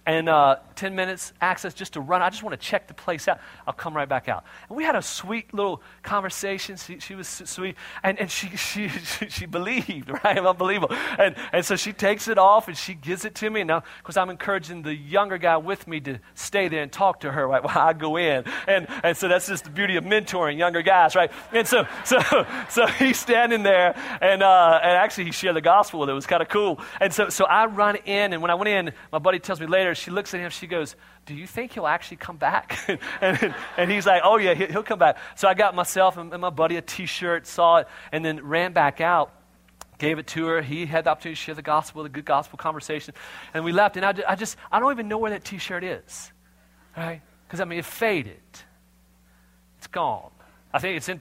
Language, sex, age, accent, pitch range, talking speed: English, male, 40-59, American, 150-195 Hz, 240 wpm